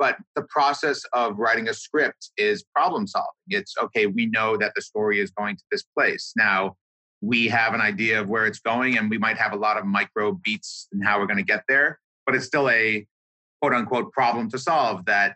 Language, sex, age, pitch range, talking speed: English, male, 30-49, 105-140 Hz, 225 wpm